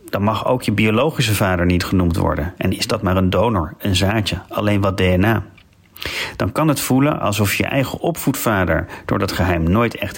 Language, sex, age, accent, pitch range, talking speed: Dutch, male, 40-59, Dutch, 95-125 Hz, 195 wpm